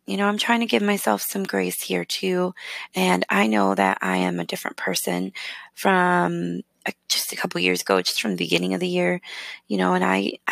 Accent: American